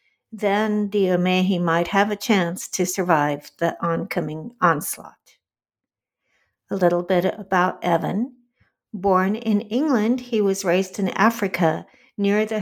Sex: female